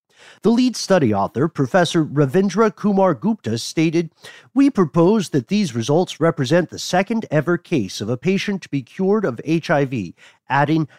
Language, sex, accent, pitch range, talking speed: English, male, American, 135-190 Hz, 145 wpm